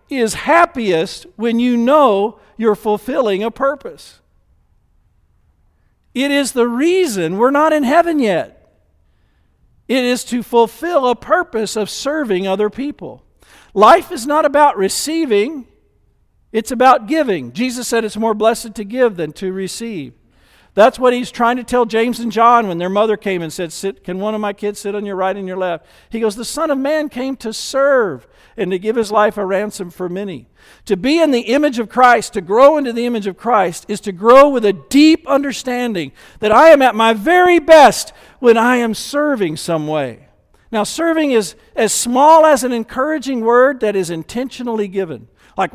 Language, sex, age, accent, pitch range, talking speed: English, male, 50-69, American, 195-265 Hz, 185 wpm